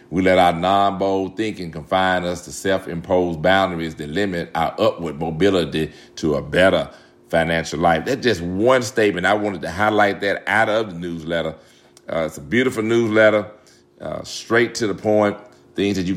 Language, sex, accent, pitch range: English, male, American, 80-105 Hz